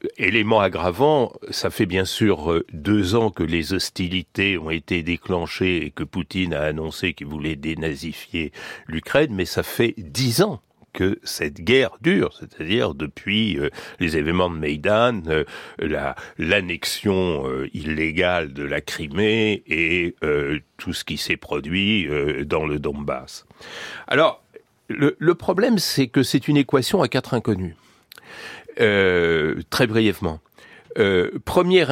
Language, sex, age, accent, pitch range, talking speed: French, male, 60-79, French, 85-135 Hz, 130 wpm